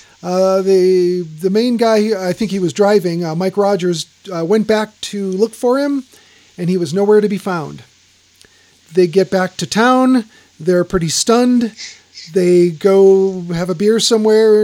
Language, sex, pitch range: English, male, 175-210 Hz